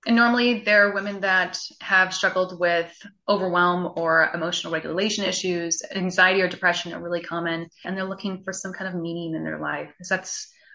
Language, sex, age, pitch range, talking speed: English, female, 20-39, 175-210 Hz, 190 wpm